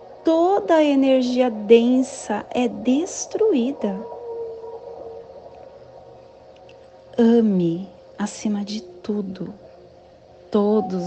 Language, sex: Portuguese, female